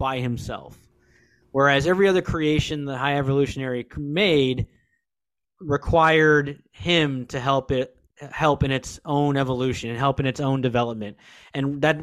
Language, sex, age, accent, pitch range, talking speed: English, male, 20-39, American, 125-150 Hz, 140 wpm